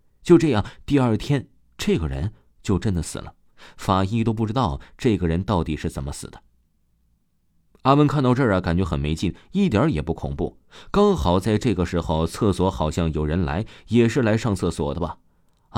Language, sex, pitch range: Chinese, male, 85-125 Hz